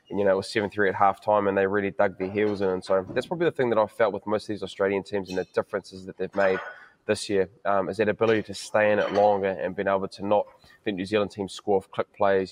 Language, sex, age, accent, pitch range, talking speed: English, male, 20-39, Australian, 95-105 Hz, 285 wpm